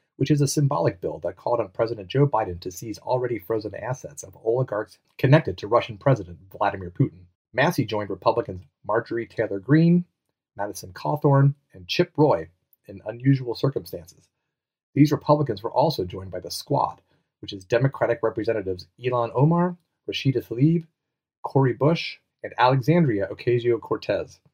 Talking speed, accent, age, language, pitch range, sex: 145 wpm, American, 30-49, English, 100-140 Hz, male